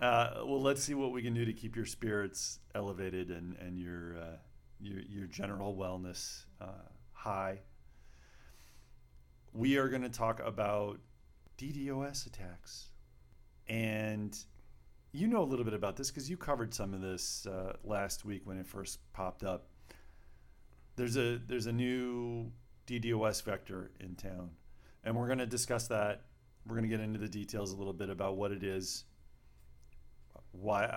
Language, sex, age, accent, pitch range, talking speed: English, male, 40-59, American, 70-105 Hz, 160 wpm